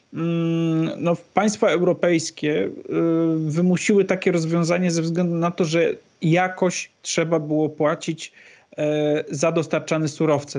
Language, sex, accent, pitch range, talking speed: Polish, male, native, 150-180 Hz, 95 wpm